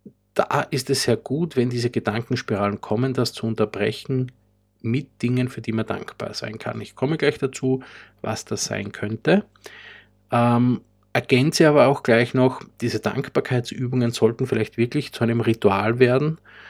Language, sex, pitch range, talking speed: English, male, 105-130 Hz, 155 wpm